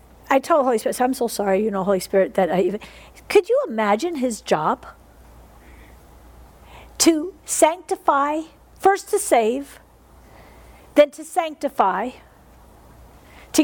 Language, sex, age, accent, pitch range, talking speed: English, female, 50-69, American, 220-340 Hz, 130 wpm